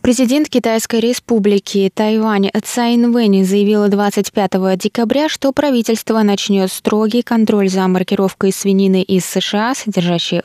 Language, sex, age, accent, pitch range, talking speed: Russian, female, 20-39, native, 185-225 Hz, 110 wpm